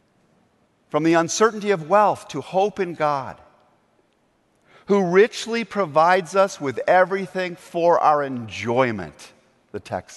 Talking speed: 120 wpm